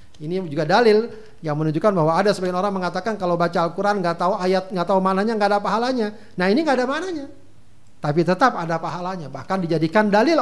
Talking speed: 195 wpm